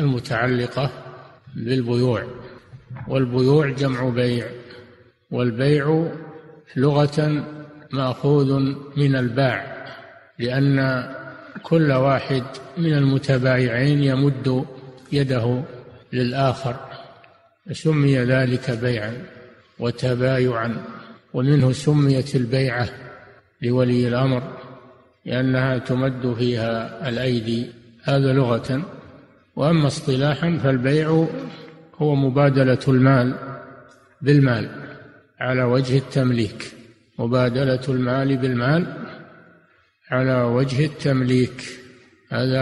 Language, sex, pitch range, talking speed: Arabic, male, 125-140 Hz, 70 wpm